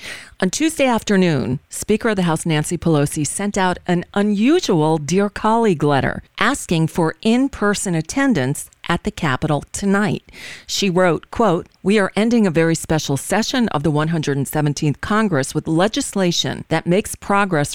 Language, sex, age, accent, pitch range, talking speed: English, female, 40-59, American, 155-195 Hz, 145 wpm